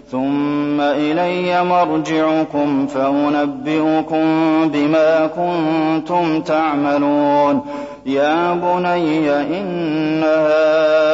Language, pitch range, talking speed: Arabic, 145-160 Hz, 55 wpm